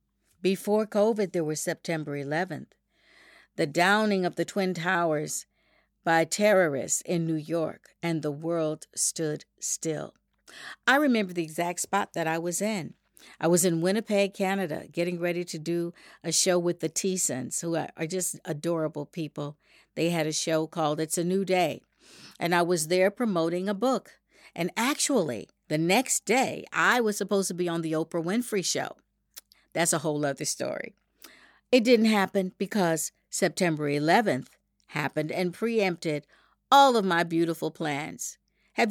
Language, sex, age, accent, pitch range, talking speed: English, female, 50-69, American, 165-205 Hz, 155 wpm